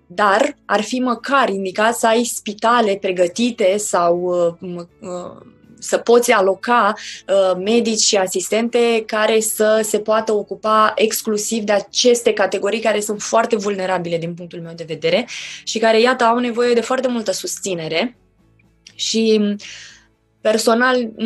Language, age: Romanian, 20-39